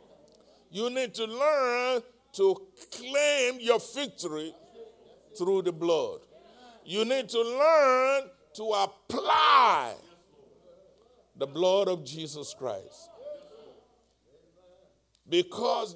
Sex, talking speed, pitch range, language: male, 85 wpm, 230-330 Hz, English